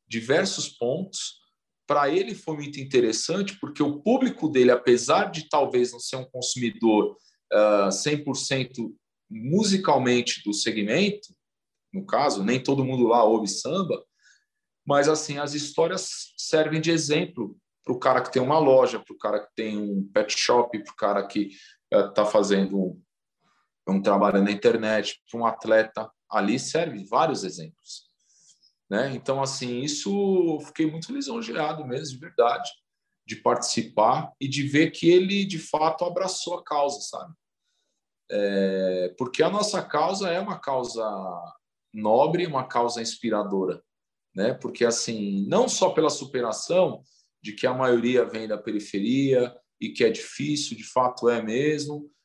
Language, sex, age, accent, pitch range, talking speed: Portuguese, male, 40-59, Brazilian, 115-160 Hz, 150 wpm